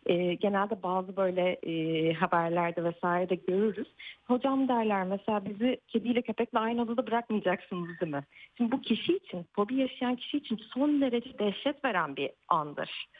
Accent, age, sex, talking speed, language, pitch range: native, 40-59, female, 155 wpm, Turkish, 190-260 Hz